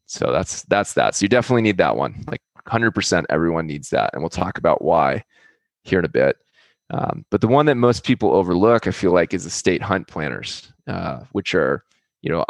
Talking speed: 215 wpm